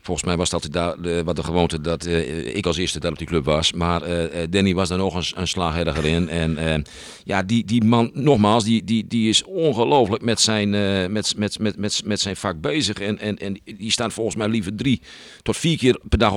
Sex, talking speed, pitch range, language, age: male, 240 wpm, 90-115 Hz, Dutch, 50-69